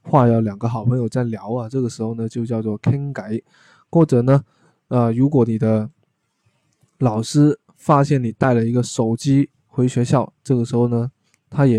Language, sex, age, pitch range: Chinese, male, 20-39, 115-140 Hz